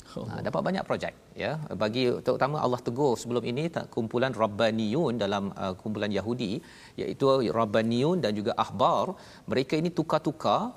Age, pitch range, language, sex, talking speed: 40-59, 110-130 Hz, Malayalam, male, 145 wpm